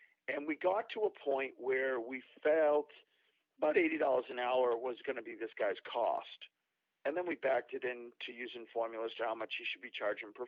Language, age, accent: English, 50-69, American